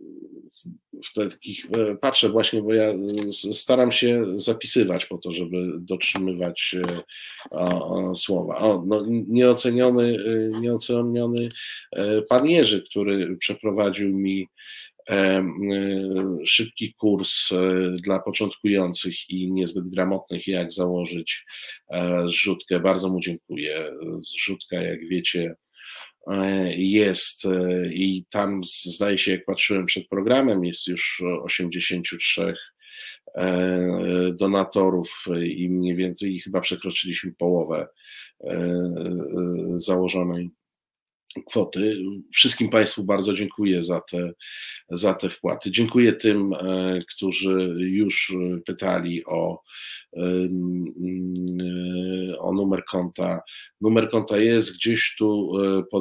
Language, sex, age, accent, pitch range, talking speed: Polish, male, 50-69, native, 90-105 Hz, 85 wpm